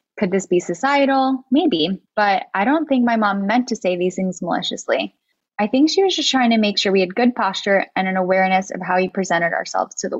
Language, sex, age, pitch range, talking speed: English, female, 10-29, 185-240 Hz, 235 wpm